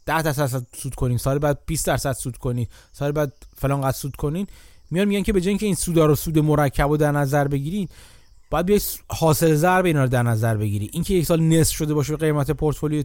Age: 30-49